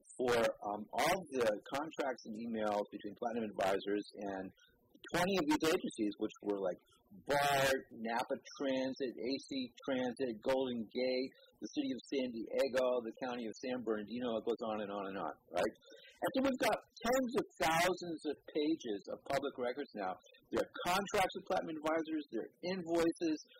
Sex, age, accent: male, 50-69, American